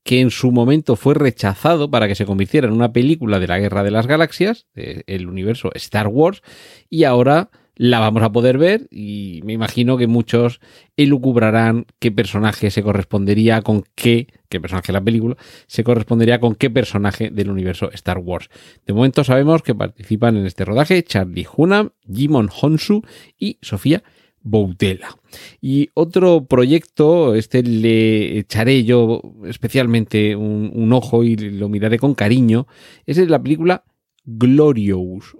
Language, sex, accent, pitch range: Spanish, male, Spanish, 105-135 Hz